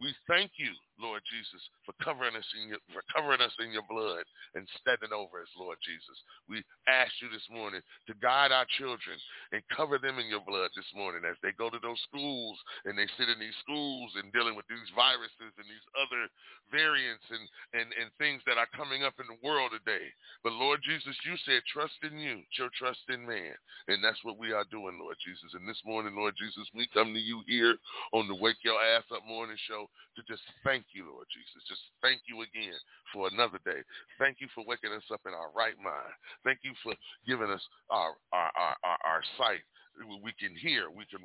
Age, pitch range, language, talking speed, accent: 40-59, 110-135 Hz, English, 210 wpm, American